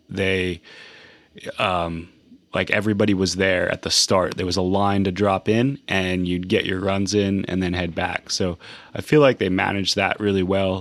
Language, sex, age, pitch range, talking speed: English, male, 30-49, 90-105 Hz, 195 wpm